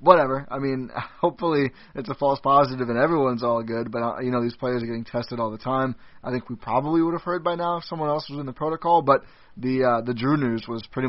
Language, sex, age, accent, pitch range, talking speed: English, male, 20-39, American, 115-140 Hz, 255 wpm